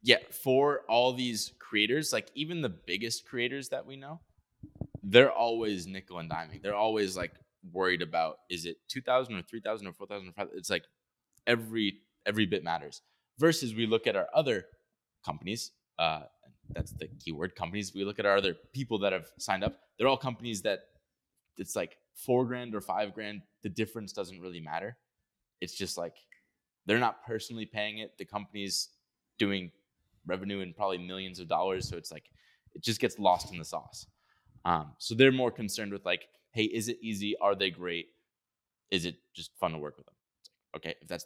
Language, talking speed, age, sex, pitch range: English, 185 wpm, 20-39, male, 90-115 Hz